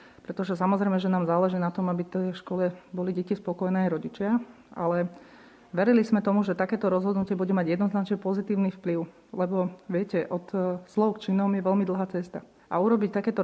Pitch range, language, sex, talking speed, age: 180-205 Hz, Slovak, female, 185 wpm, 30-49